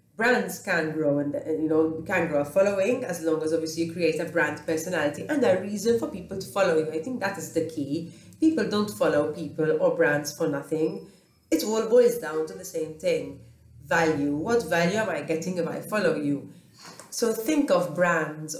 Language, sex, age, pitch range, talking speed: English, female, 30-49, 155-195 Hz, 205 wpm